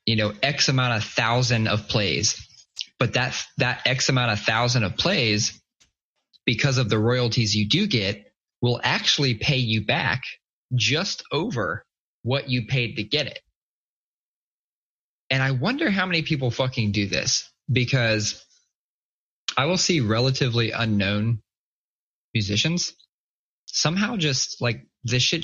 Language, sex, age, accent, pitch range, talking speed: English, male, 20-39, American, 110-135 Hz, 135 wpm